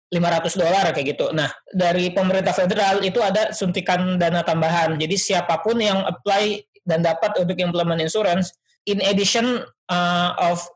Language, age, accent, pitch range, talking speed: Indonesian, 20-39, native, 165-200 Hz, 145 wpm